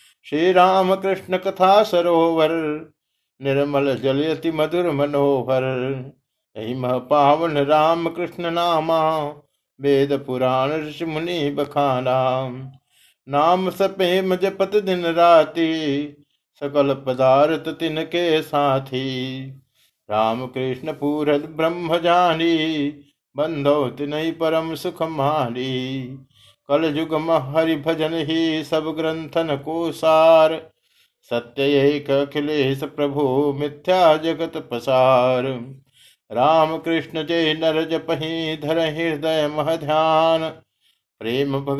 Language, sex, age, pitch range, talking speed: Hindi, male, 50-69, 135-160 Hz, 90 wpm